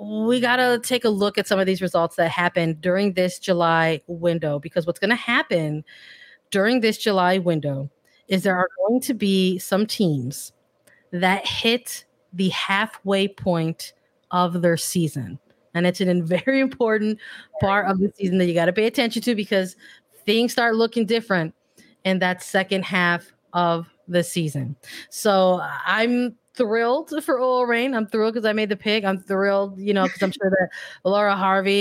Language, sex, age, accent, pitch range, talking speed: English, female, 30-49, American, 175-205 Hz, 175 wpm